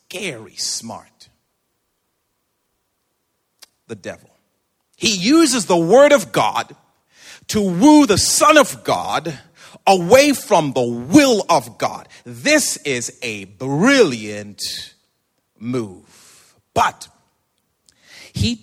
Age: 40-59